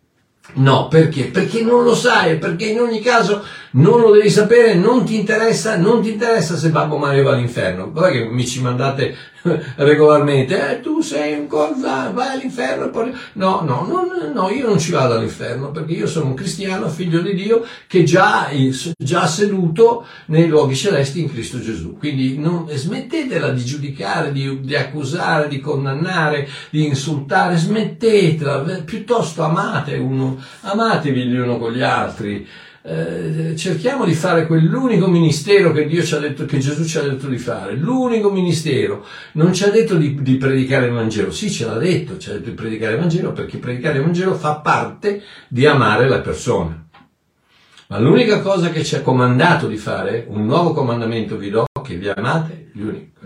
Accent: native